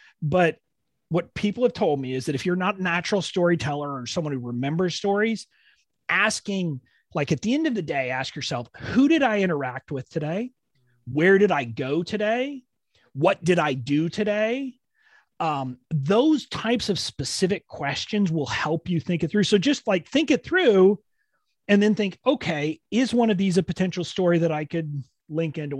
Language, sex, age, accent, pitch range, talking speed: English, male, 30-49, American, 145-205 Hz, 185 wpm